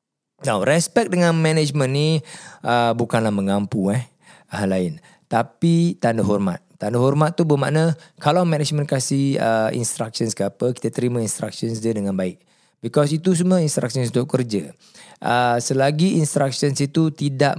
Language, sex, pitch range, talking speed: Malay, male, 120-155 Hz, 145 wpm